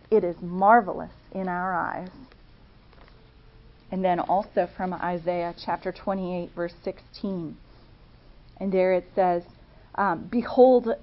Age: 40-59